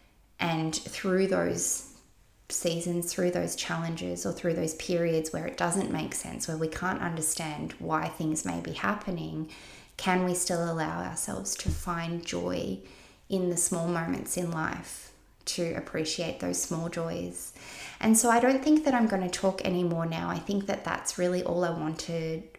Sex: female